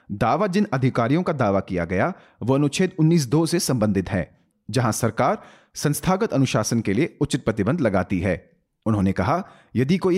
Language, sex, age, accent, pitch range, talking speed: Hindi, male, 30-49, native, 100-155 Hz, 160 wpm